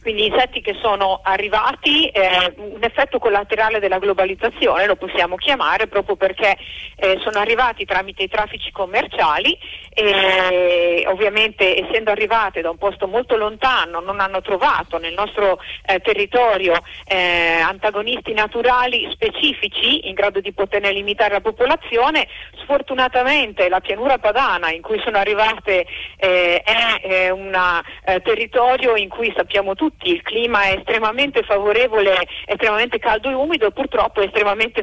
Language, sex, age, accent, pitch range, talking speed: English, female, 40-59, Italian, 190-235 Hz, 135 wpm